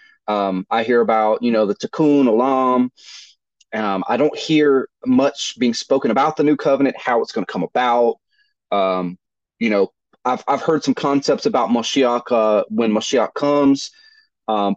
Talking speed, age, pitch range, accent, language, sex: 165 wpm, 30-49, 100-145 Hz, American, English, male